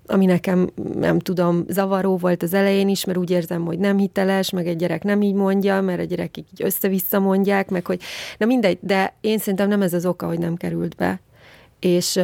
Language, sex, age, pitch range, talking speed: Hungarian, female, 30-49, 175-195 Hz, 210 wpm